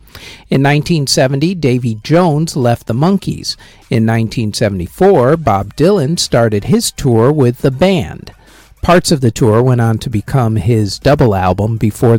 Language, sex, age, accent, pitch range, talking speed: English, male, 50-69, American, 115-170 Hz, 145 wpm